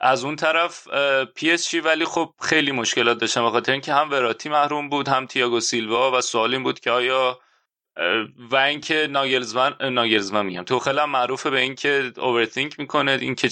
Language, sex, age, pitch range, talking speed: Persian, male, 30-49, 110-135 Hz, 180 wpm